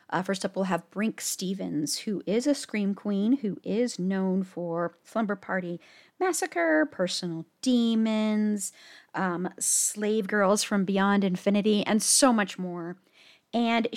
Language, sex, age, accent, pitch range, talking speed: English, female, 30-49, American, 170-220 Hz, 140 wpm